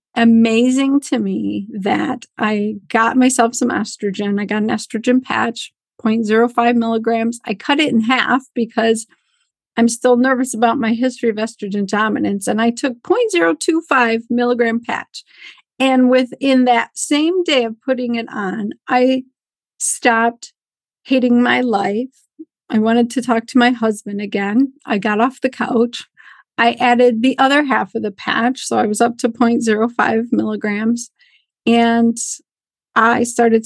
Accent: American